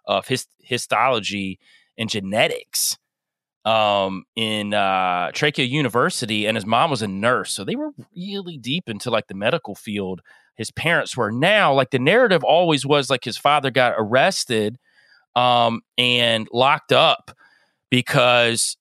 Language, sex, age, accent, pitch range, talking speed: English, male, 30-49, American, 120-170 Hz, 140 wpm